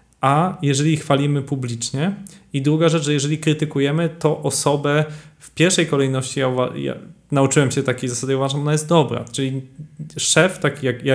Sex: male